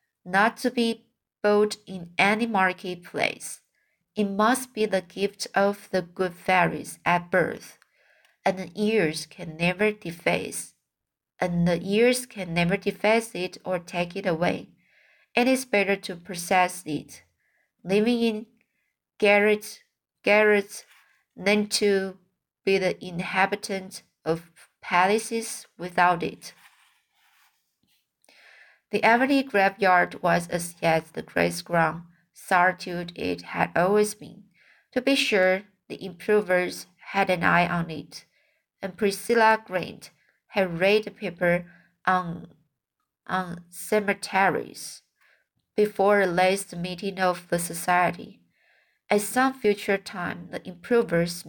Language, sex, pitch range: Chinese, female, 175-210 Hz